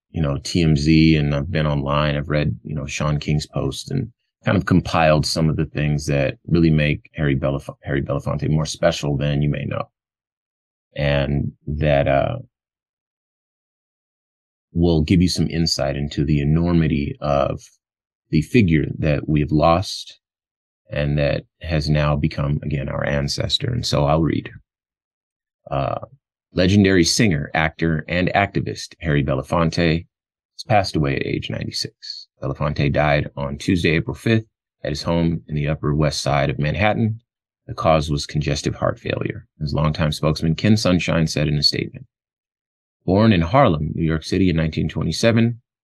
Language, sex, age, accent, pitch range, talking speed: English, male, 30-49, American, 75-85 Hz, 155 wpm